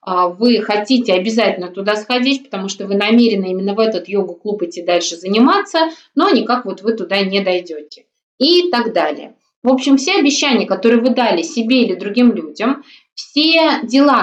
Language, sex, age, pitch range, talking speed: Russian, female, 20-39, 185-240 Hz, 165 wpm